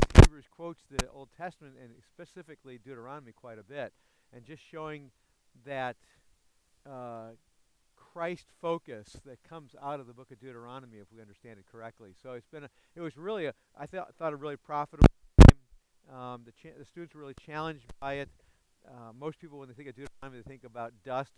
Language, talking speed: English, 195 wpm